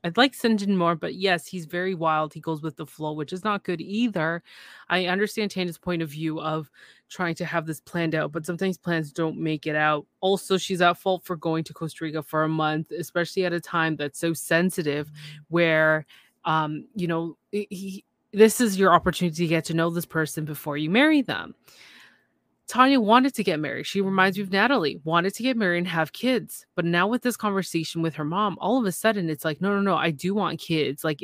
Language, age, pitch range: English, 20-39, 160-190 Hz